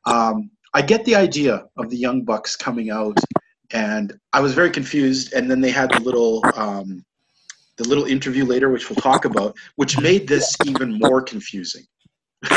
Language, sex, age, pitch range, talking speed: English, male, 40-59, 130-180 Hz, 175 wpm